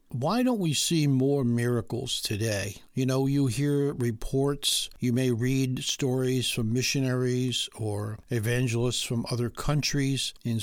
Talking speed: 135 wpm